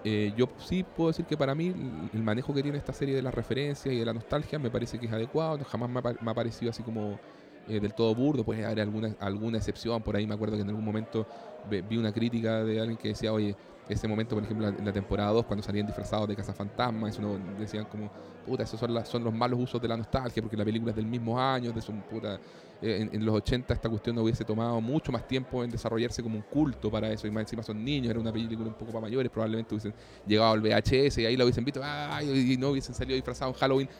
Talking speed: 255 wpm